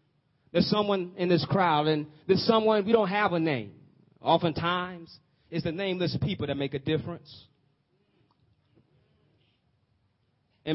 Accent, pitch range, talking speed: American, 125-165 Hz, 130 wpm